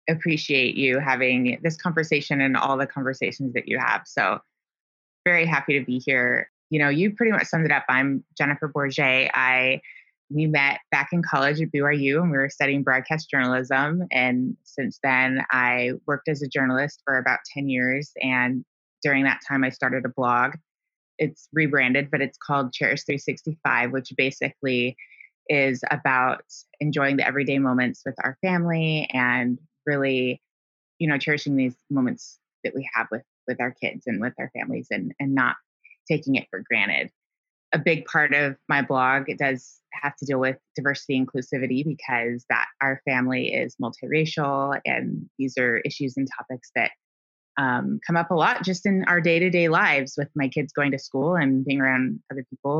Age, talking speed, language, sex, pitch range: 20-39, 175 wpm, English, female, 130-150 Hz